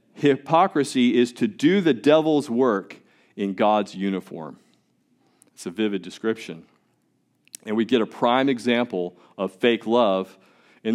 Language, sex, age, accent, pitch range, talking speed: English, male, 40-59, American, 120-165 Hz, 130 wpm